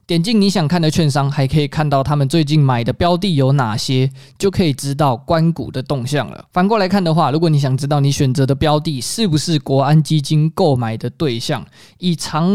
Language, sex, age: Chinese, male, 20-39